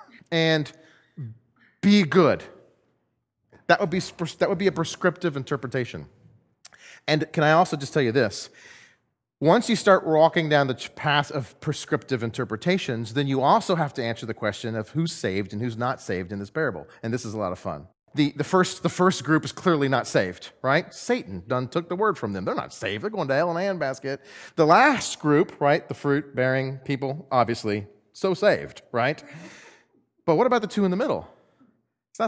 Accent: American